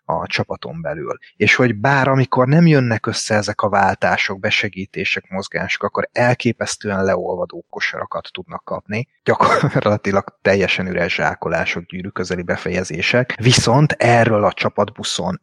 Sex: male